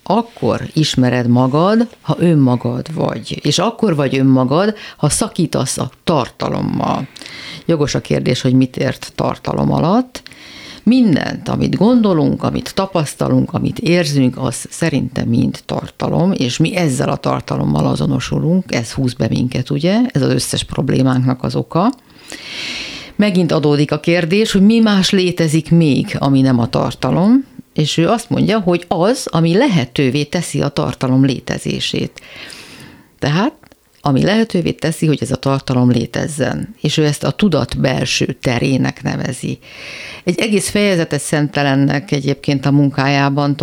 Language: Hungarian